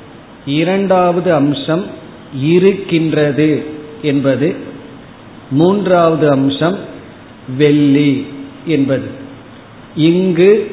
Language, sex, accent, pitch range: Tamil, male, native, 145-180 Hz